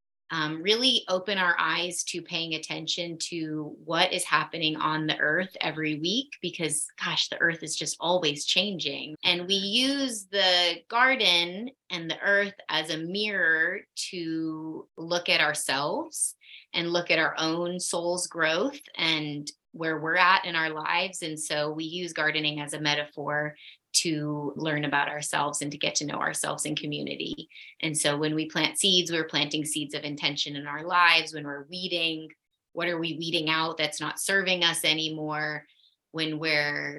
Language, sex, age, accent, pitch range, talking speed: English, female, 20-39, American, 150-175 Hz, 165 wpm